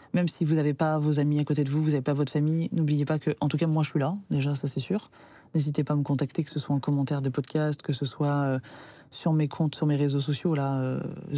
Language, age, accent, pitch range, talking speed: French, 20-39, French, 145-170 Hz, 290 wpm